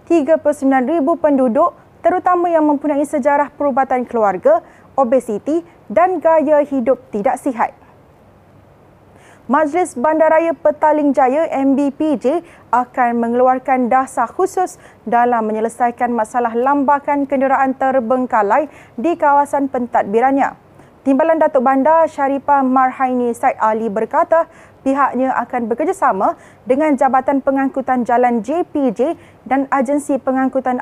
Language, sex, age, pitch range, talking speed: Malay, female, 30-49, 250-300 Hz, 100 wpm